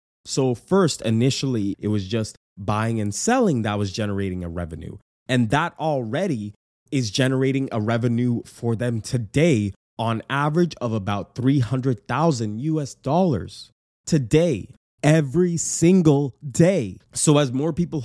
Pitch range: 110-155 Hz